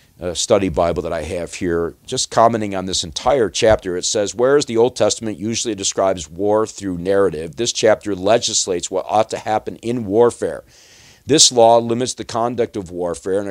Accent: American